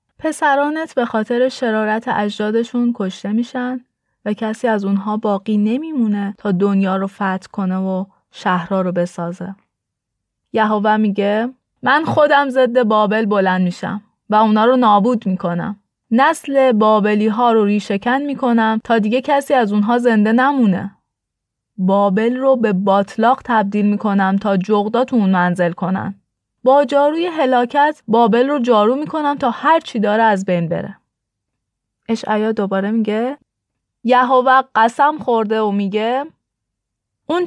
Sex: female